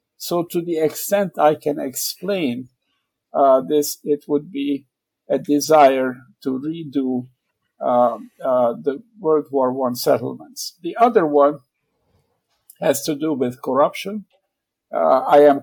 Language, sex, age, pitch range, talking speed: English, male, 50-69, 135-160 Hz, 130 wpm